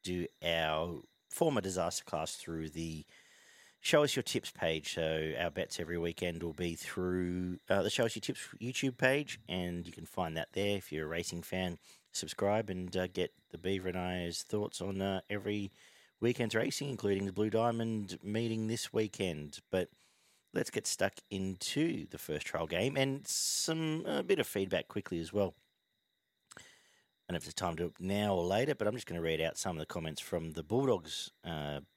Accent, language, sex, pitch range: Australian, English, male, 85-110 Hz